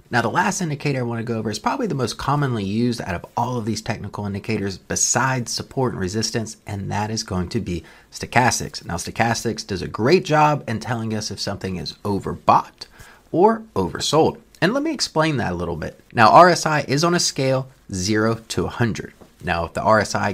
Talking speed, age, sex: 205 wpm, 30-49, male